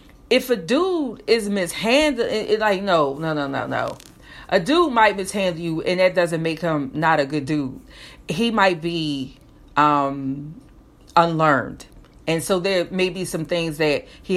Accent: American